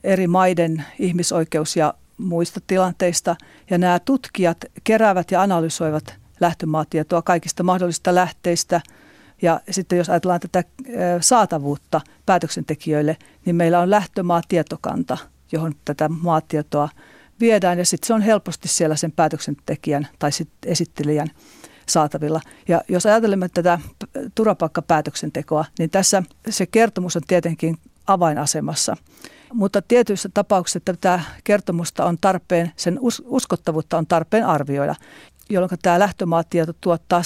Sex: female